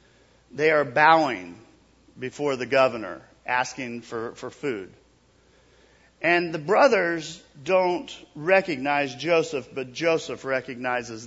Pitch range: 120-165 Hz